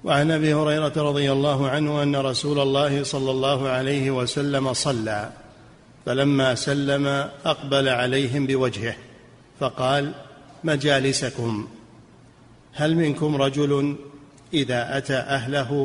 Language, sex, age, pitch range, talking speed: Arabic, male, 50-69, 130-145 Hz, 100 wpm